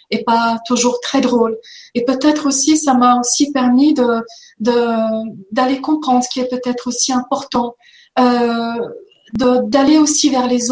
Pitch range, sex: 245-285 Hz, female